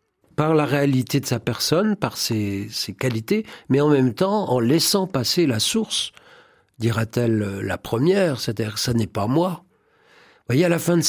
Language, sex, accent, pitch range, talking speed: French, male, French, 115-165 Hz, 185 wpm